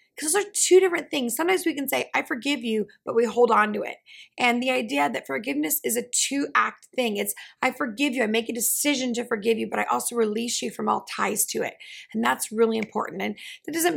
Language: English